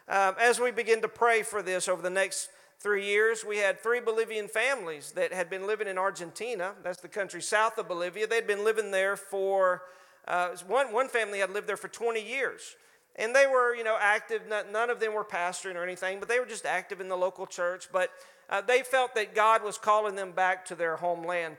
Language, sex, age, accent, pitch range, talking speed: English, male, 40-59, American, 190-240 Hz, 225 wpm